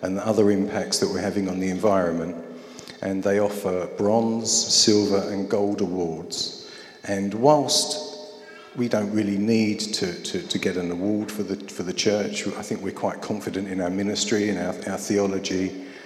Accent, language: British, English